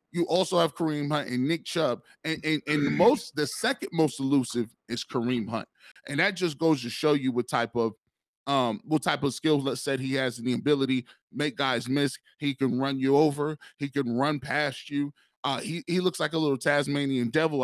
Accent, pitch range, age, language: American, 125-155 Hz, 20-39, English